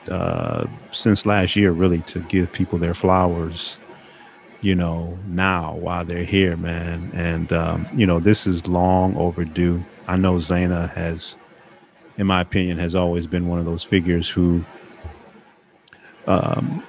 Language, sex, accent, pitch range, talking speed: English, male, American, 85-95 Hz, 145 wpm